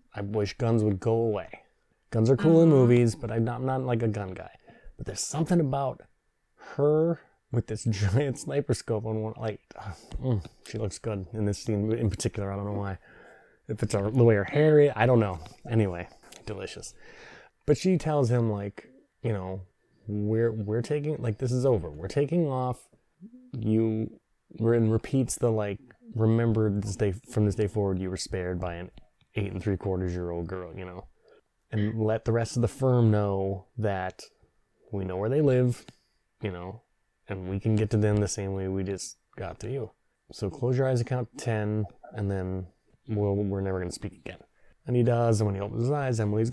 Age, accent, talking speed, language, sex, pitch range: 20-39, American, 195 wpm, English, male, 105-125 Hz